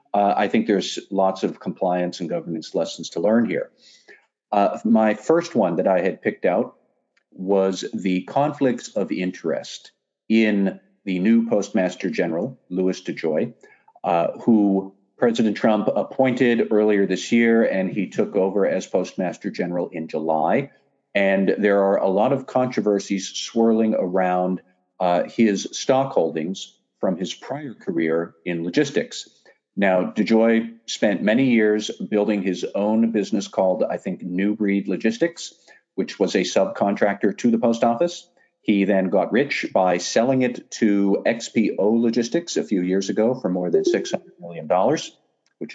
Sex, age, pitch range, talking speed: male, 50-69, 95-115 Hz, 150 wpm